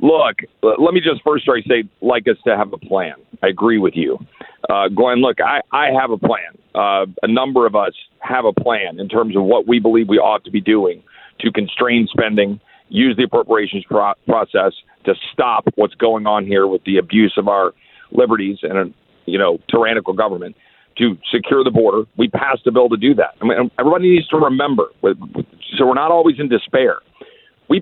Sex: male